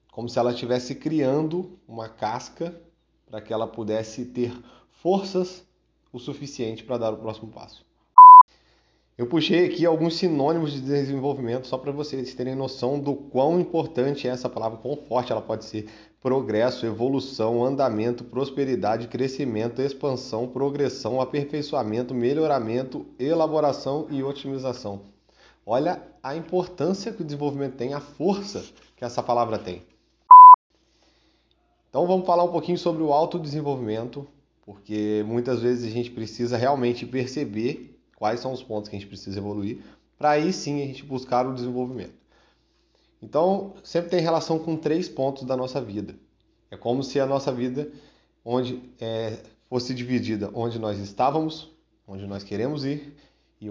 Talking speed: 140 wpm